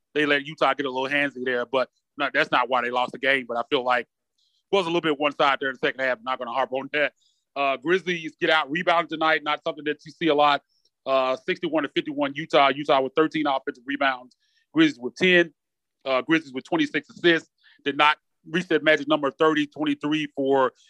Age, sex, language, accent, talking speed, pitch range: 30-49, male, English, American, 225 wpm, 140-170 Hz